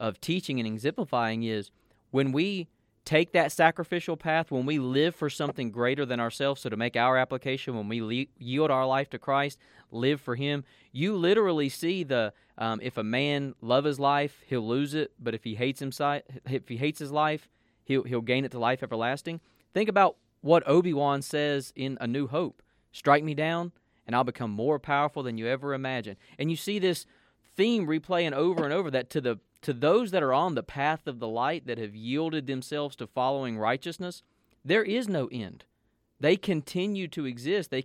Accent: American